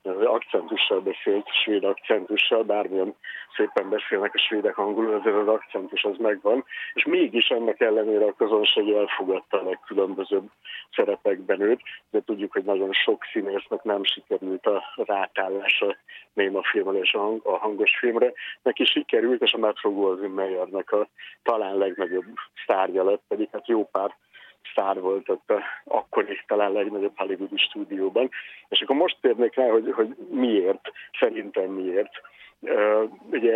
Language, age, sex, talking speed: Hungarian, 50-69, male, 130 wpm